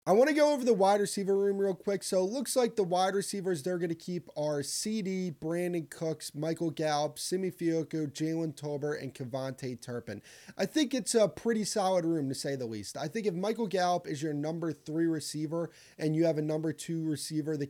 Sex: male